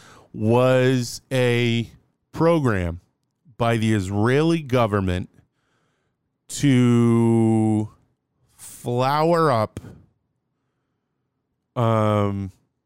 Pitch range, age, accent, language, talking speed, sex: 115-150 Hz, 30-49, American, English, 50 wpm, male